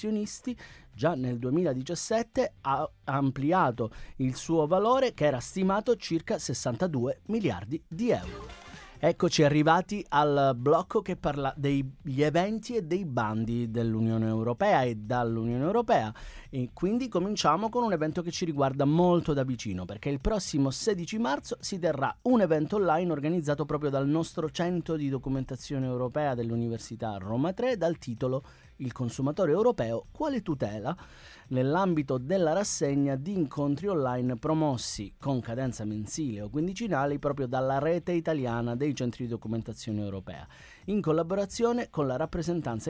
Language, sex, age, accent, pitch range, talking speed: Italian, male, 30-49, native, 120-170 Hz, 135 wpm